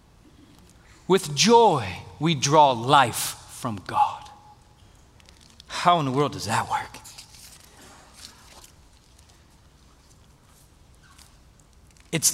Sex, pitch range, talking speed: male, 125-185 Hz, 75 wpm